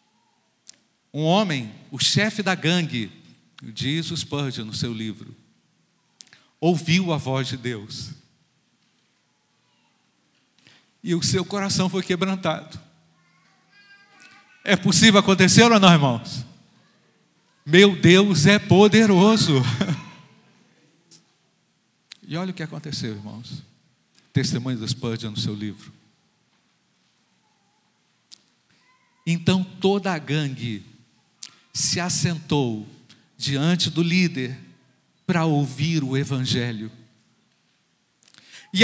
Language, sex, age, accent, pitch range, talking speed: Portuguese, male, 50-69, Brazilian, 135-200 Hz, 90 wpm